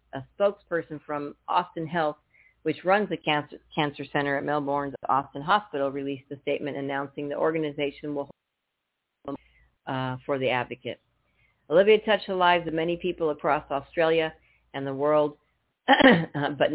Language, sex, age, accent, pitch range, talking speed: English, female, 50-69, American, 140-165 Hz, 145 wpm